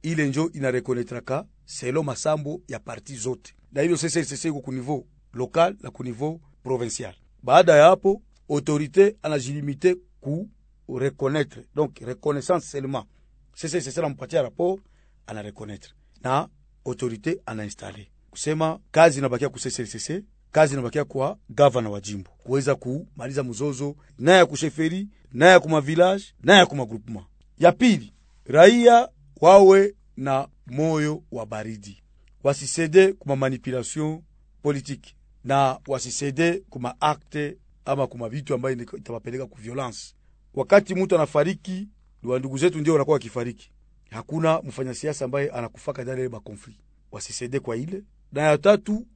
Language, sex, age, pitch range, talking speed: French, male, 40-59, 125-165 Hz, 140 wpm